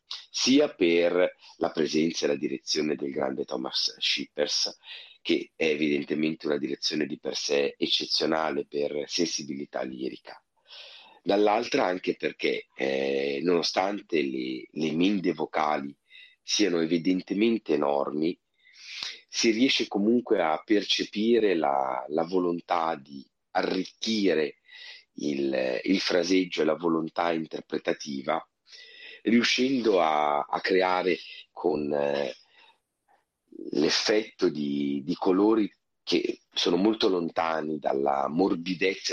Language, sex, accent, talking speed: Italian, male, native, 105 wpm